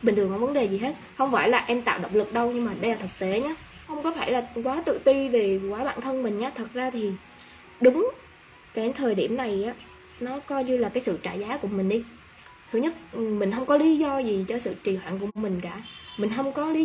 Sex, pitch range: female, 205-280 Hz